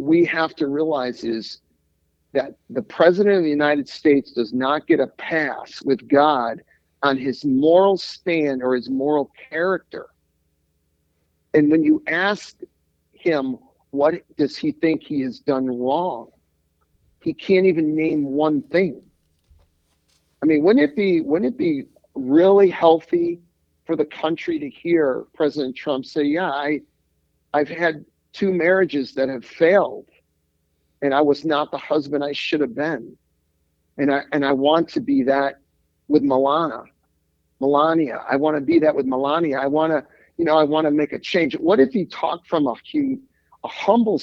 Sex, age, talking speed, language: male, 50-69, 165 wpm, English